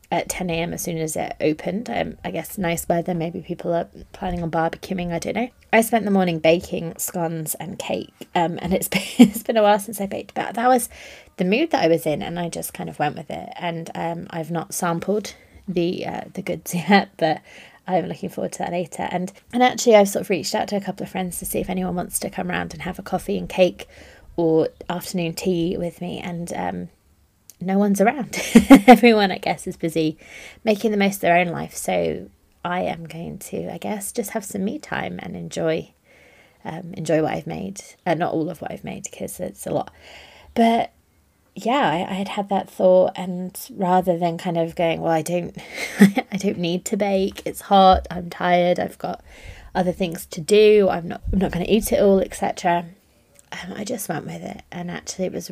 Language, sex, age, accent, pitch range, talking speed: English, female, 20-39, British, 170-200 Hz, 225 wpm